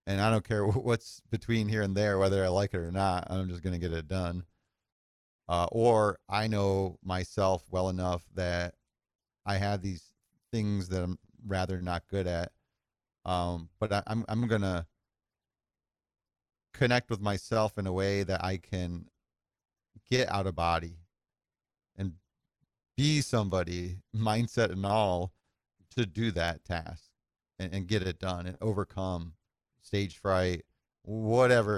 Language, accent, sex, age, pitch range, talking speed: English, American, male, 40-59, 90-105 Hz, 145 wpm